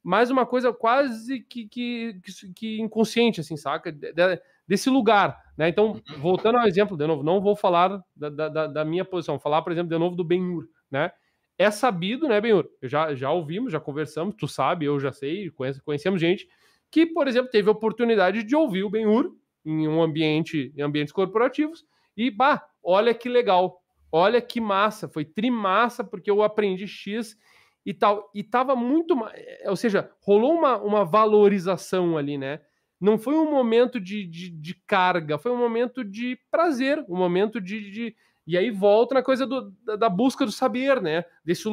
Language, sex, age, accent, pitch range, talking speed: Portuguese, male, 20-39, Brazilian, 175-235 Hz, 185 wpm